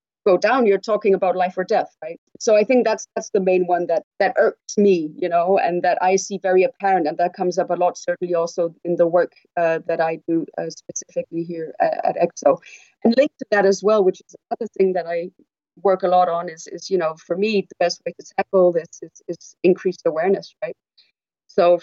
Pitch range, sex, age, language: 180-220 Hz, female, 30-49, English